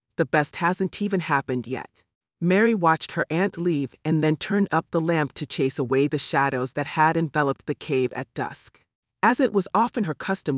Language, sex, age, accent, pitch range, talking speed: English, female, 30-49, American, 140-180 Hz, 200 wpm